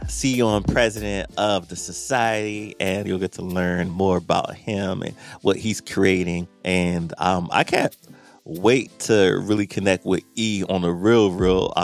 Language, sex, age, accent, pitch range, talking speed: English, male, 30-49, American, 95-125 Hz, 160 wpm